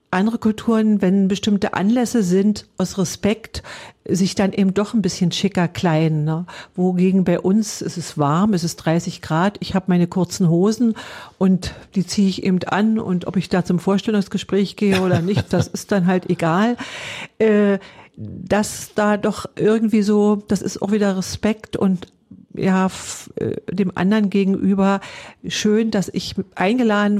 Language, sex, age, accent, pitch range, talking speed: German, female, 50-69, German, 180-210 Hz, 160 wpm